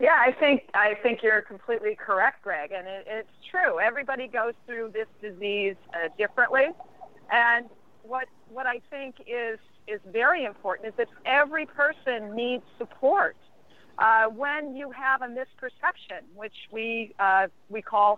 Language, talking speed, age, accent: English, 150 wpm, 50-69, American